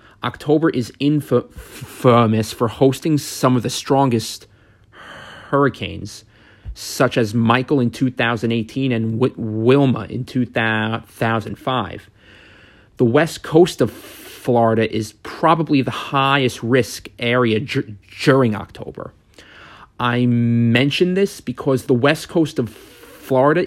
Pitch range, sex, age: 110-140 Hz, male, 30-49